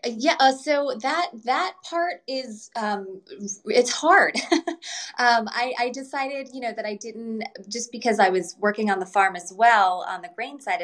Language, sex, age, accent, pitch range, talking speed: English, female, 20-39, American, 165-210 Hz, 185 wpm